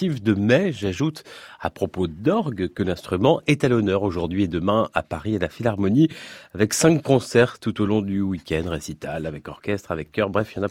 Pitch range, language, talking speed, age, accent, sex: 90-130 Hz, French, 205 wpm, 30-49, French, male